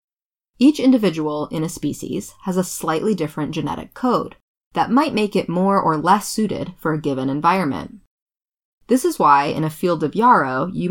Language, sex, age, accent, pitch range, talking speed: English, female, 20-39, American, 150-200 Hz, 175 wpm